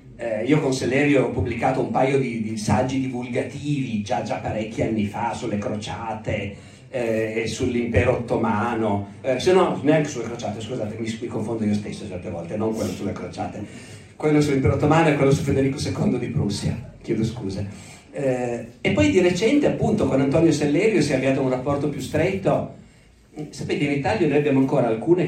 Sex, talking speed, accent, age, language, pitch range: male, 180 wpm, native, 50-69, Italian, 110-145 Hz